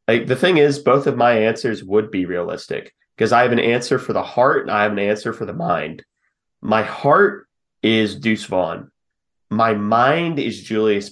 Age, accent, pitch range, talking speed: 30-49, American, 100-120 Hz, 195 wpm